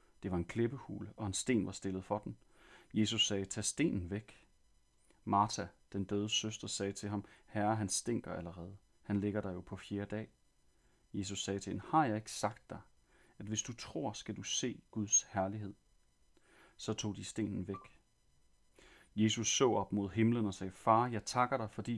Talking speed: 190 wpm